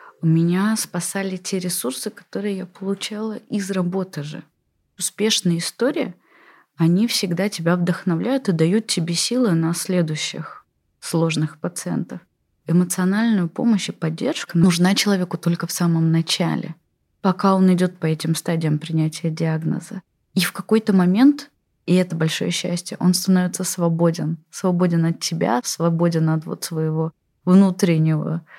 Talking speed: 130 wpm